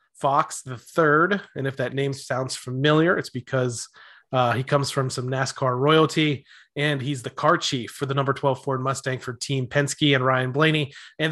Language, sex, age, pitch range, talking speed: English, male, 30-49, 130-145 Hz, 190 wpm